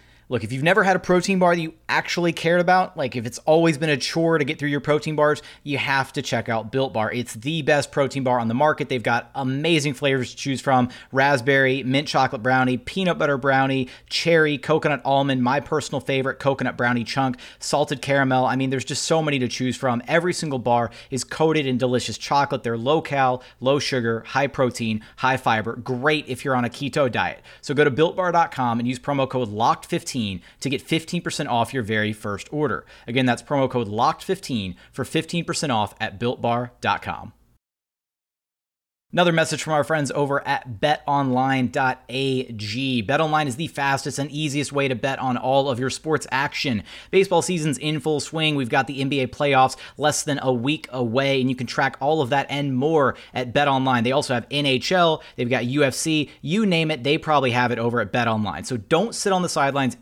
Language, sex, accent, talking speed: English, male, American, 195 wpm